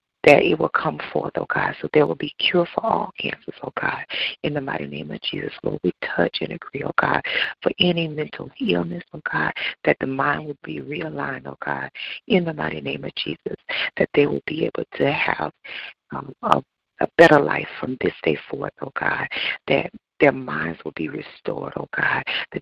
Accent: American